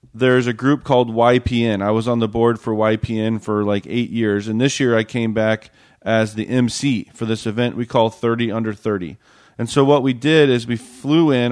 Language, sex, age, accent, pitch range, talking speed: English, male, 40-59, American, 110-125 Hz, 220 wpm